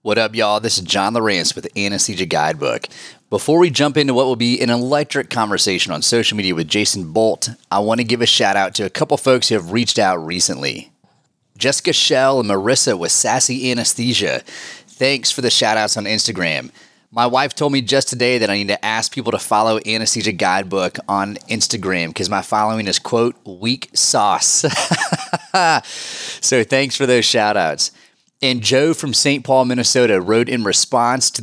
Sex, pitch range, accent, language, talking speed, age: male, 105-130 Hz, American, English, 185 wpm, 30-49